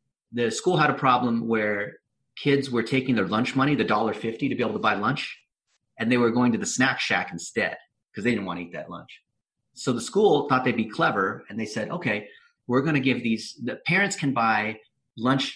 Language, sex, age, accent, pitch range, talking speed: English, male, 30-49, American, 115-160 Hz, 225 wpm